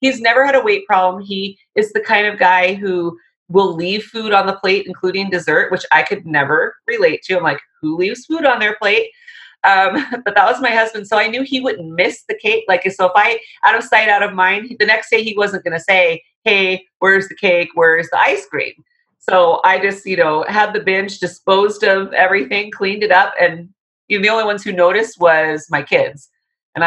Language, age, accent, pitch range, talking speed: English, 30-49, American, 175-240 Hz, 225 wpm